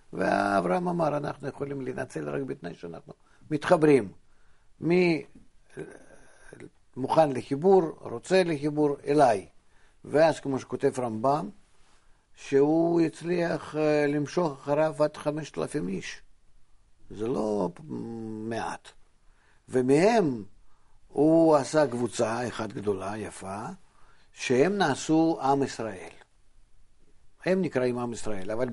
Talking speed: 100 wpm